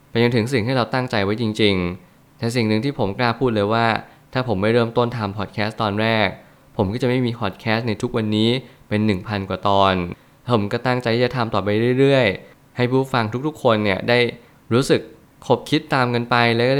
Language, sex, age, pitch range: Thai, male, 20-39, 105-125 Hz